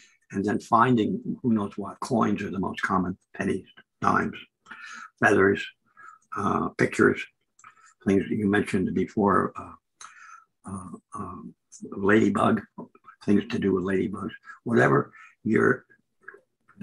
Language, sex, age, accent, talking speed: English, male, 60-79, American, 120 wpm